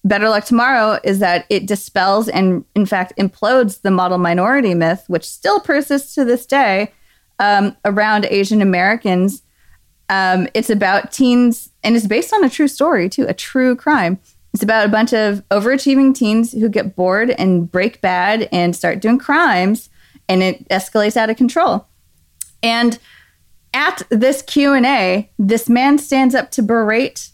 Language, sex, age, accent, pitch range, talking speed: English, female, 20-39, American, 190-250 Hz, 160 wpm